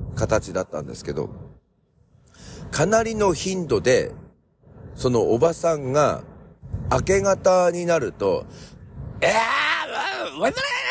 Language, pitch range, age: Japanese, 130-205 Hz, 40-59